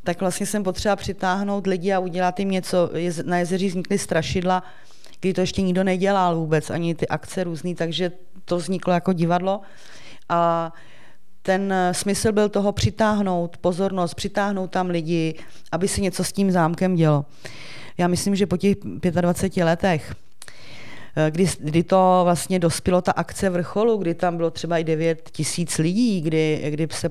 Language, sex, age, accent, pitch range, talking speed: Czech, female, 30-49, native, 160-185 Hz, 160 wpm